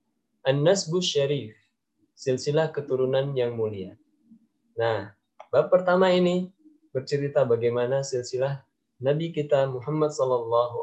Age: 20-39